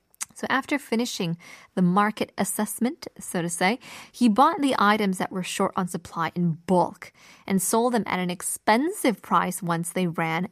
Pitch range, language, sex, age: 185-245 Hz, Korean, female, 20-39